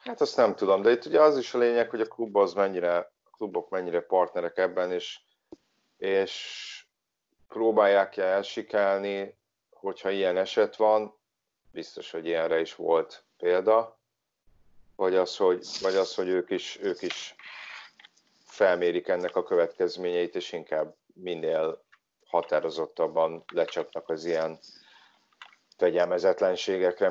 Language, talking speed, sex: Hungarian, 125 wpm, male